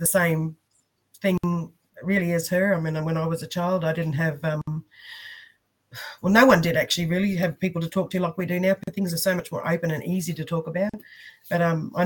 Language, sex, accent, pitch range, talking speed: English, female, Australian, 150-175 Hz, 235 wpm